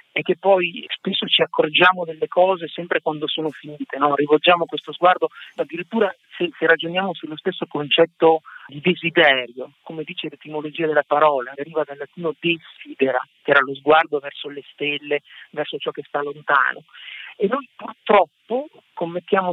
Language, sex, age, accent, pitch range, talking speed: Italian, male, 50-69, native, 150-190 Hz, 155 wpm